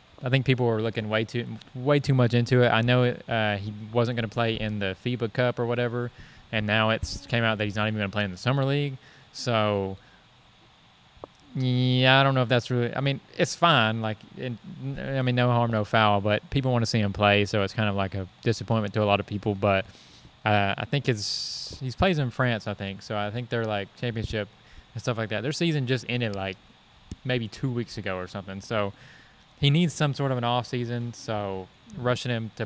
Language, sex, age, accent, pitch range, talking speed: English, male, 20-39, American, 105-130 Hz, 230 wpm